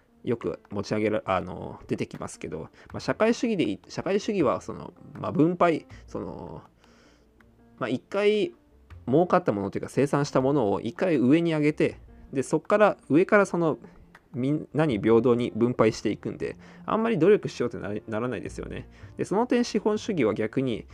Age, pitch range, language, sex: 20-39, 110-175 Hz, Japanese, male